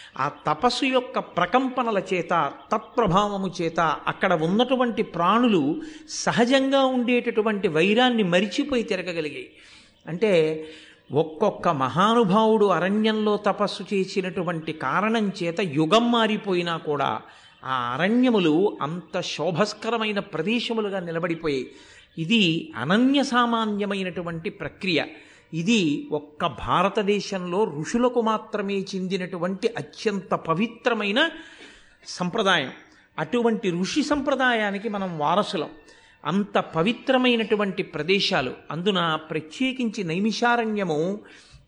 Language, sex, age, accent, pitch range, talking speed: Telugu, male, 50-69, native, 175-235 Hz, 80 wpm